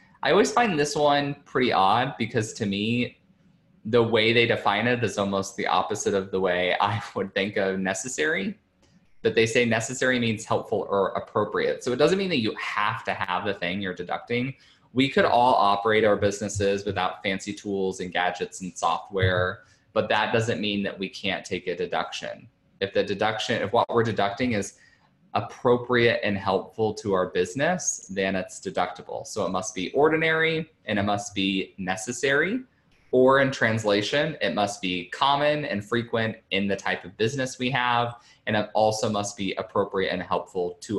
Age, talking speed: 20-39, 180 wpm